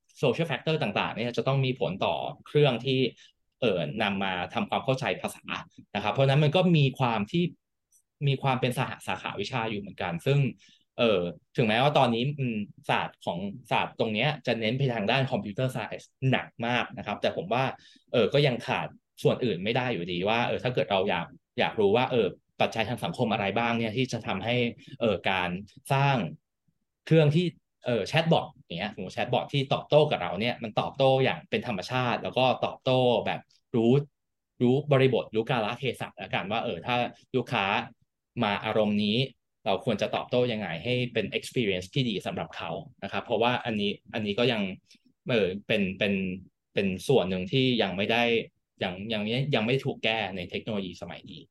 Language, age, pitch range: English, 20-39, 105-135 Hz